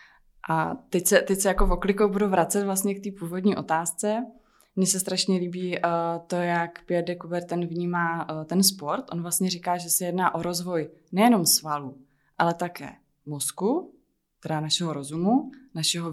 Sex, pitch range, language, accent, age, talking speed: female, 155-185 Hz, Czech, native, 20-39, 170 wpm